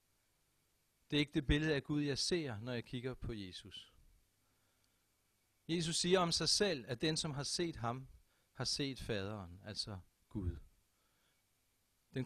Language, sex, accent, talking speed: Danish, male, native, 150 wpm